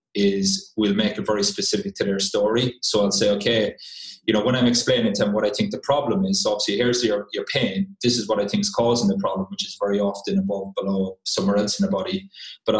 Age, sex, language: 20-39, male, English